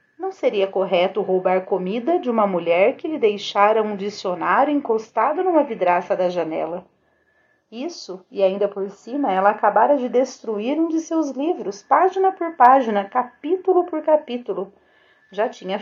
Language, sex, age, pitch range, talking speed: Portuguese, female, 40-59, 185-305 Hz, 150 wpm